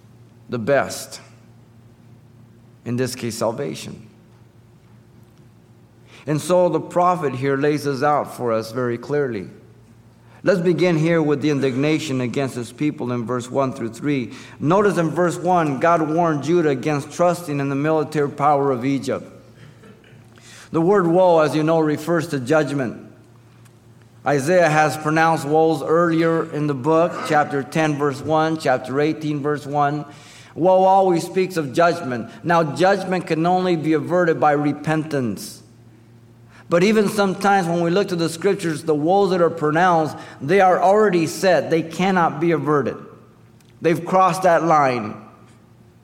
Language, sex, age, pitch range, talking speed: English, male, 50-69, 120-170 Hz, 145 wpm